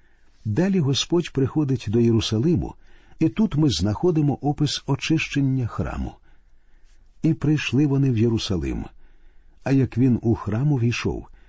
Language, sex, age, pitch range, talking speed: Ukrainian, male, 50-69, 105-140 Hz, 120 wpm